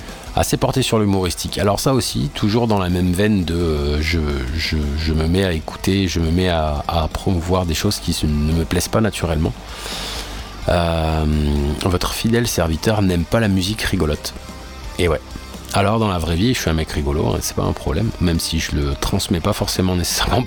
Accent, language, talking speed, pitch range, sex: French, French, 200 wpm, 80-100 Hz, male